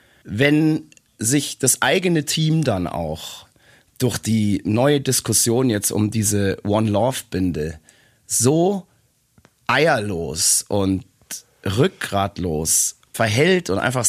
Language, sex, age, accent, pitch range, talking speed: German, male, 30-49, German, 105-130 Hz, 100 wpm